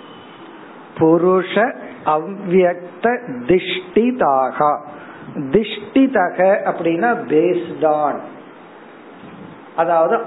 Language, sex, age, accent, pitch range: Tamil, male, 50-69, native, 150-195 Hz